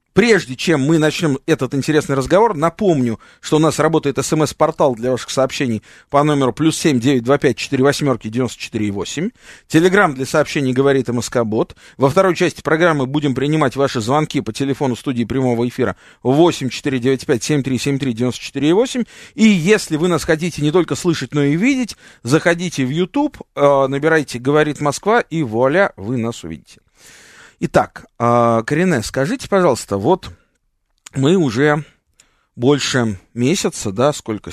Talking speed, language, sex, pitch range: 135 wpm, Russian, male, 120-160 Hz